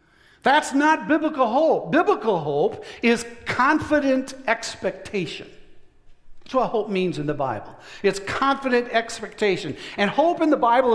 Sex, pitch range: male, 205-265 Hz